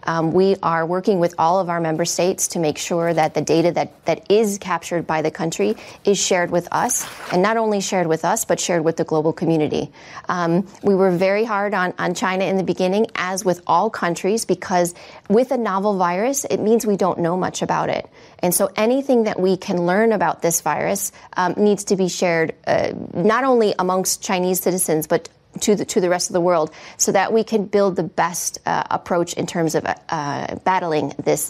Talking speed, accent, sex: 215 wpm, American, female